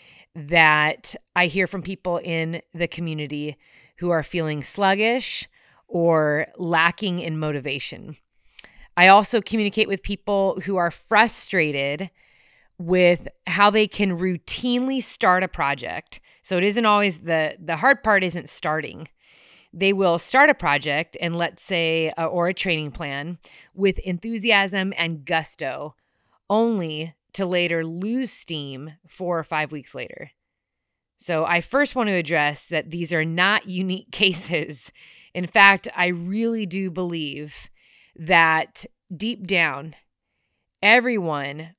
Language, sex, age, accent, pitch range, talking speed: English, female, 30-49, American, 160-195 Hz, 130 wpm